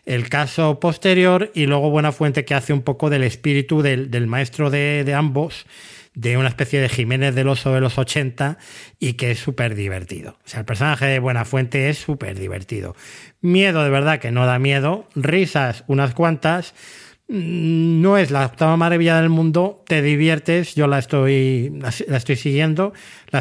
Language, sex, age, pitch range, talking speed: Spanish, male, 30-49, 130-155 Hz, 180 wpm